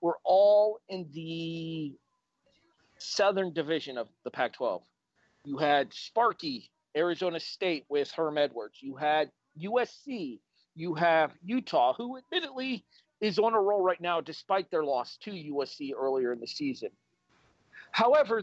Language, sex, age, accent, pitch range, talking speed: English, male, 40-59, American, 160-220 Hz, 135 wpm